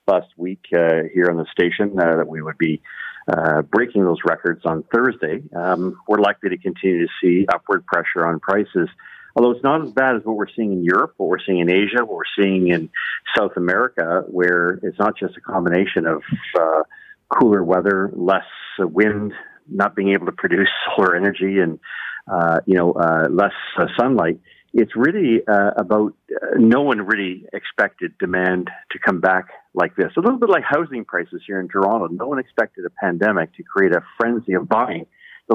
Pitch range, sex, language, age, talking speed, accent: 90-115 Hz, male, English, 50-69, 190 wpm, American